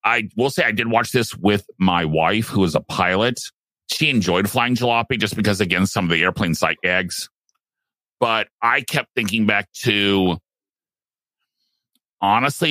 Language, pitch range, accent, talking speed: English, 95-120 Hz, American, 165 wpm